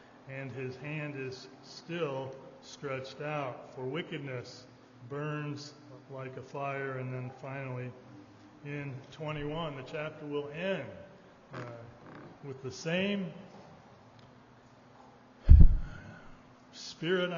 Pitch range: 130-155 Hz